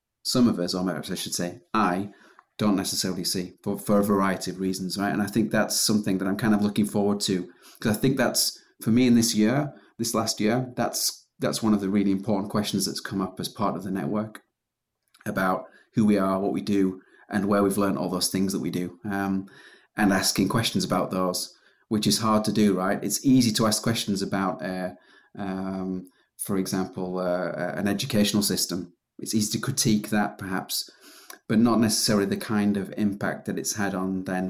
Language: English